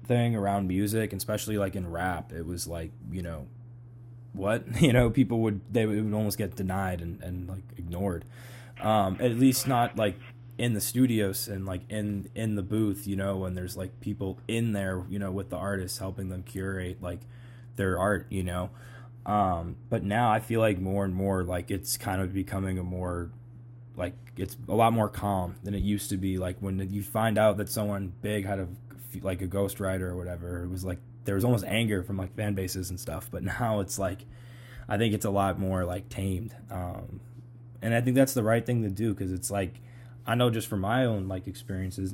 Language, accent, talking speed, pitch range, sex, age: English, American, 215 wpm, 95-120 Hz, male, 20-39